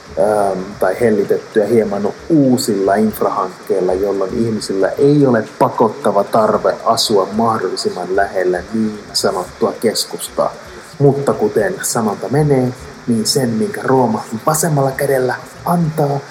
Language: Finnish